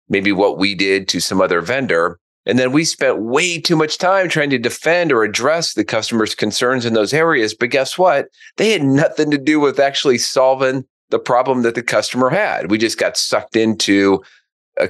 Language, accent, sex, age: English, American, male, 40-59